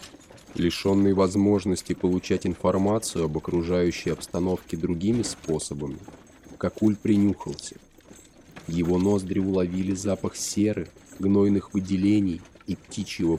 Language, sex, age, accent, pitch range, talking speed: Russian, male, 20-39, native, 85-100 Hz, 90 wpm